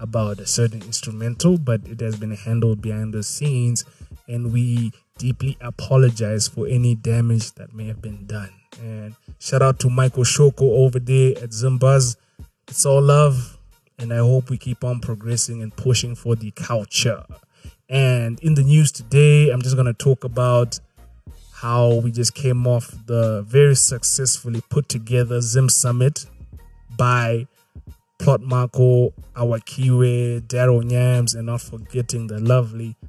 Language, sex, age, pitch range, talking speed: English, male, 20-39, 115-135 Hz, 150 wpm